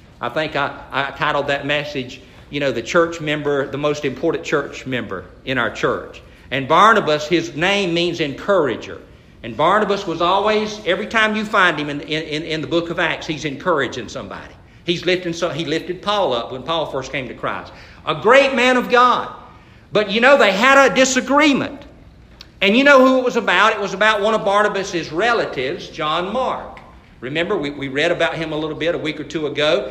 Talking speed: 200 wpm